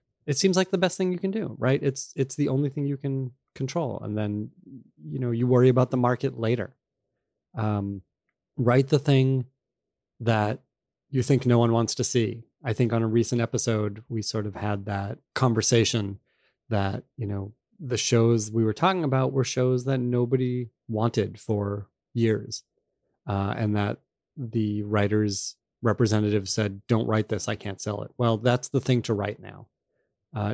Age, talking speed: 30-49, 175 wpm